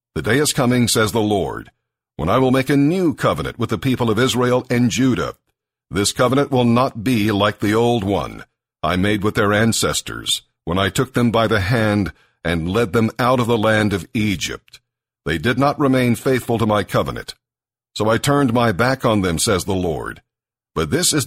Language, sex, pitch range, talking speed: English, male, 105-125 Hz, 205 wpm